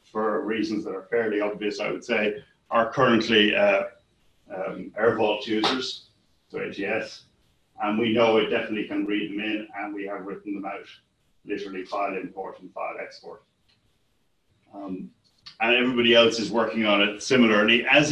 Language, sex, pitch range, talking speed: English, male, 105-115 Hz, 160 wpm